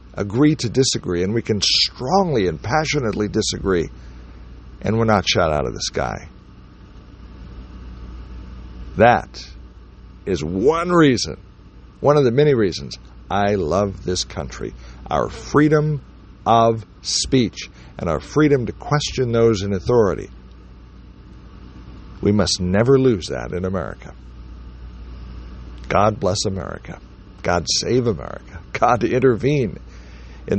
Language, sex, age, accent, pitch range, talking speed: English, male, 60-79, American, 75-125 Hz, 115 wpm